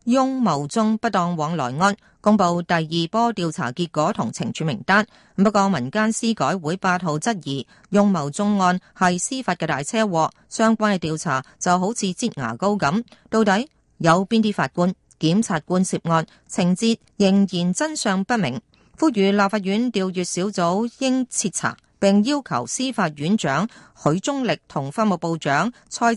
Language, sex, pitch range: Chinese, female, 170-220 Hz